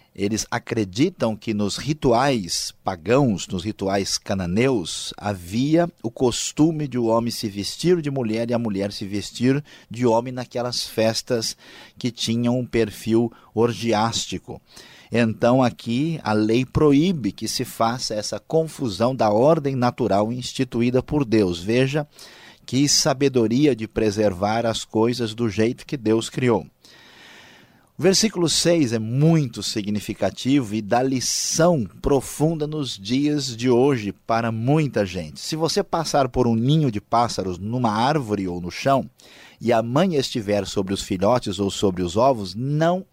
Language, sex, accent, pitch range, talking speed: Portuguese, male, Brazilian, 110-135 Hz, 145 wpm